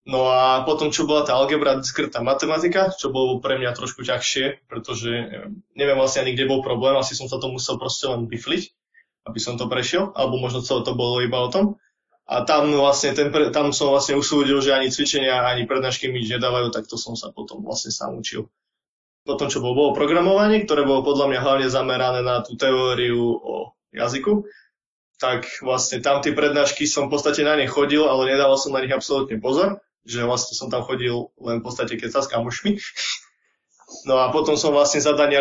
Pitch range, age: 125-145 Hz, 20-39